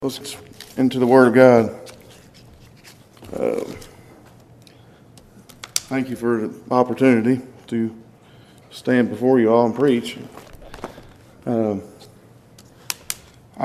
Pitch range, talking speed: 115-140 Hz, 90 wpm